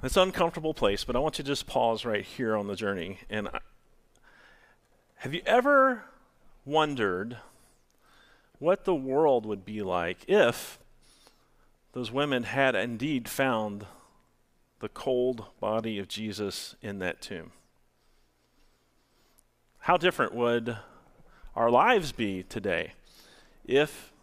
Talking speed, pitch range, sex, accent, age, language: 120 wpm, 105-140 Hz, male, American, 40-59, English